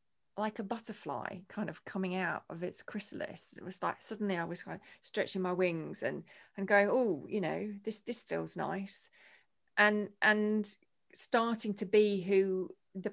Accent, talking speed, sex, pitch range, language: British, 175 wpm, female, 165-200 Hz, English